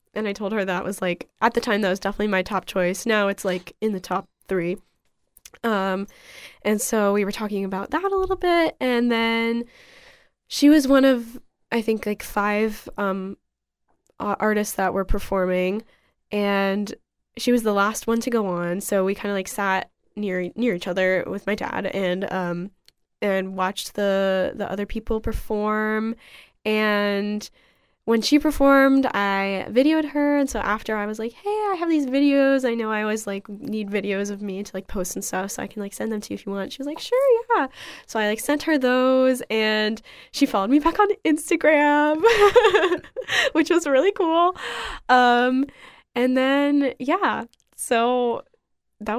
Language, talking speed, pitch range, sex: English, 185 wpm, 200-270 Hz, female